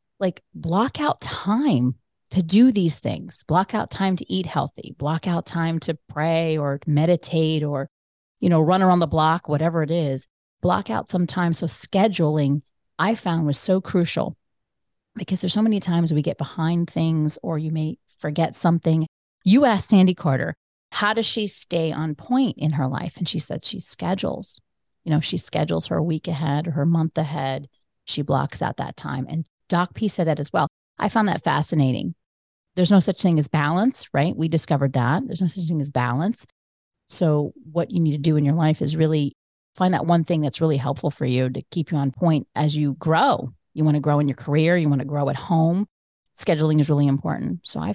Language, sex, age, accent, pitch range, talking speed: English, female, 30-49, American, 145-180 Hz, 205 wpm